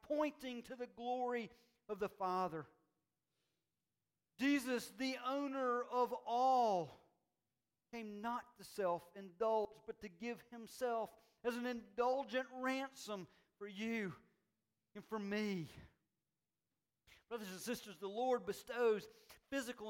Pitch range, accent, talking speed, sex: 190-245 Hz, American, 110 wpm, male